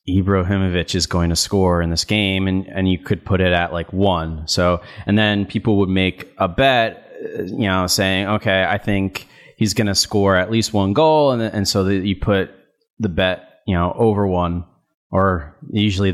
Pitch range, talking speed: 90-110 Hz, 195 wpm